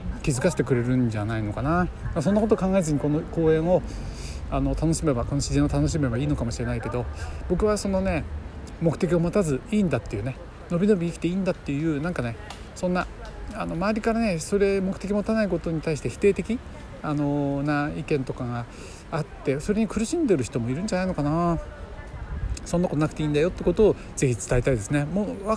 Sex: male